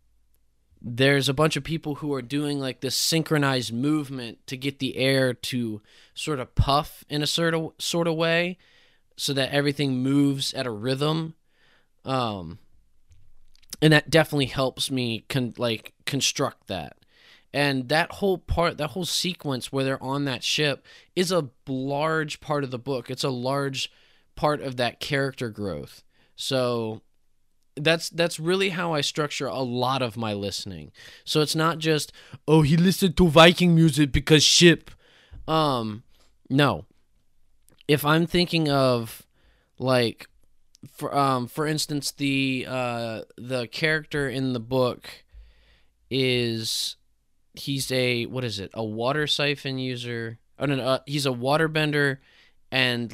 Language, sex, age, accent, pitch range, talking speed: English, male, 20-39, American, 120-150 Hz, 150 wpm